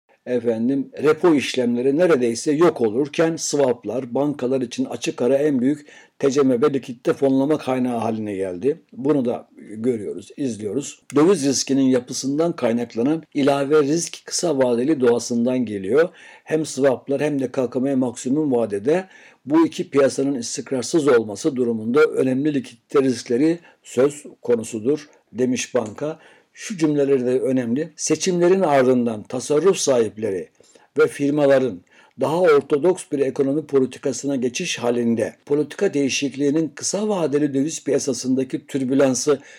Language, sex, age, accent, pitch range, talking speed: Turkish, male, 60-79, native, 125-155 Hz, 120 wpm